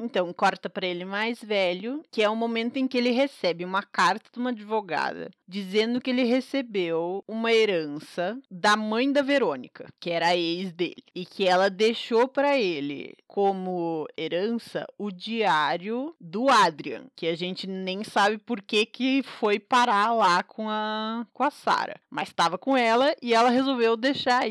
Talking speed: 170 wpm